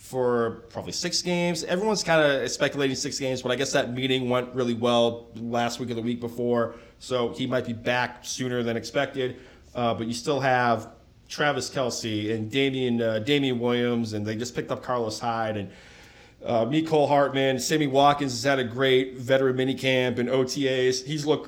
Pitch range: 120-150 Hz